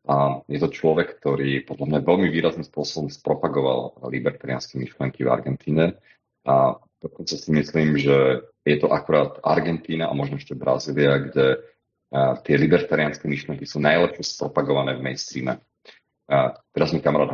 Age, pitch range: 40-59, 70-75 Hz